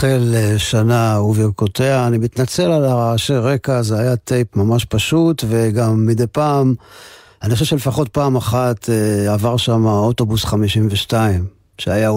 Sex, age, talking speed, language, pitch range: male, 50-69, 130 wpm, Hebrew, 110-140 Hz